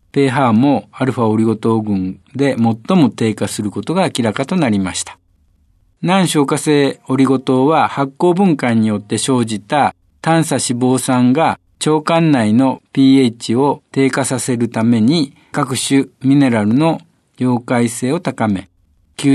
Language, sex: Japanese, male